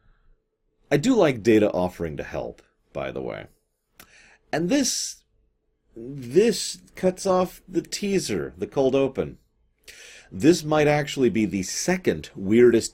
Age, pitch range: 30-49, 85-120 Hz